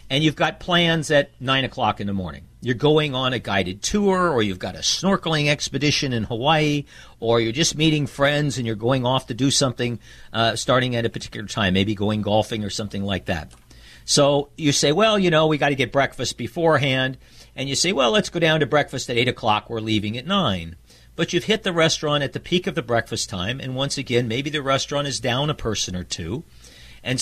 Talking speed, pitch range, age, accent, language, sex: 225 wpm, 115-160 Hz, 50-69, American, English, male